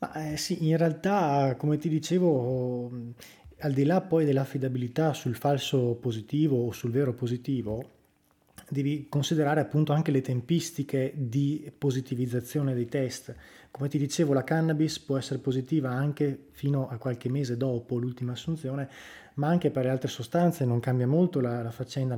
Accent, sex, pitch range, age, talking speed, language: native, male, 125-150 Hz, 20-39, 155 wpm, Italian